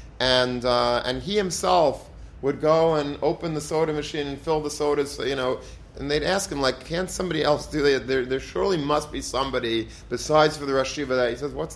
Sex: male